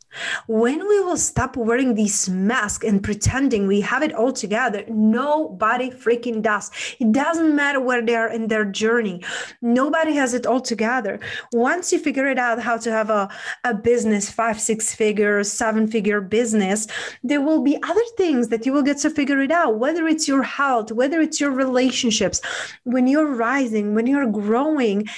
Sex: female